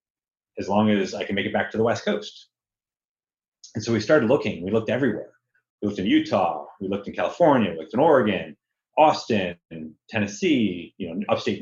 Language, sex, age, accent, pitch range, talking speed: English, male, 30-49, American, 100-125 Hz, 195 wpm